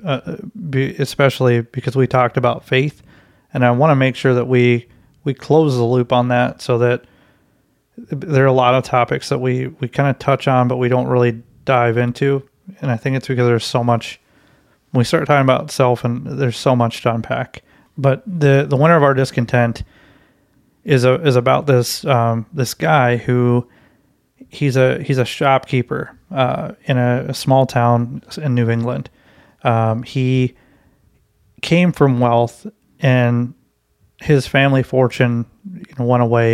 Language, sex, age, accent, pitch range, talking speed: English, male, 30-49, American, 120-140 Hz, 170 wpm